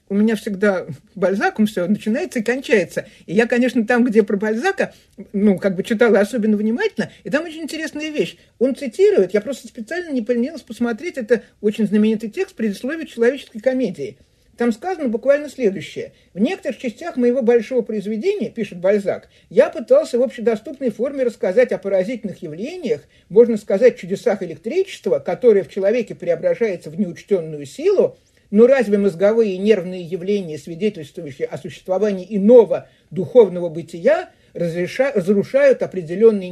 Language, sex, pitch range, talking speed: Russian, male, 195-260 Hz, 145 wpm